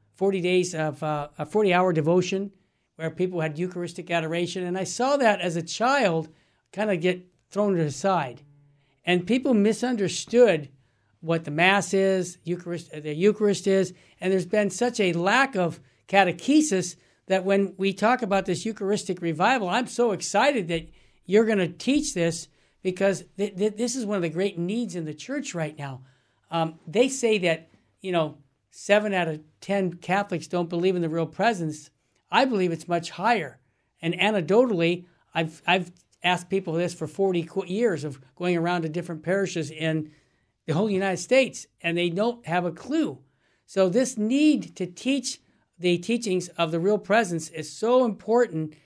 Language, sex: English, male